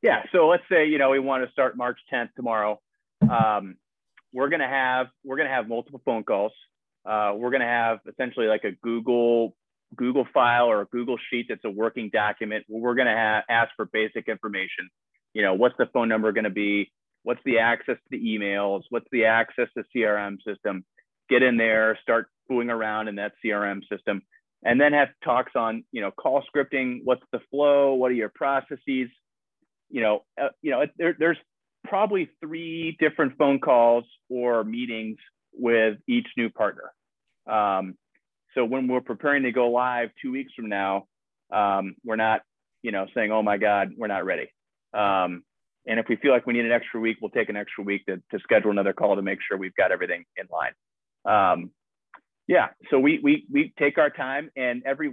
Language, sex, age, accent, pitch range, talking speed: English, male, 30-49, American, 110-130 Hz, 195 wpm